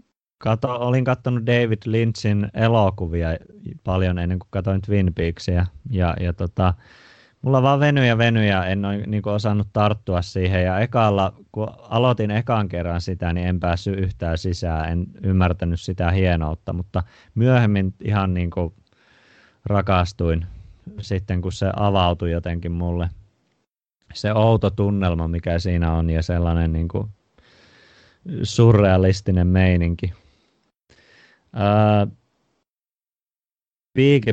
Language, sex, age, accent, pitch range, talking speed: Finnish, male, 30-49, native, 90-105 Hz, 120 wpm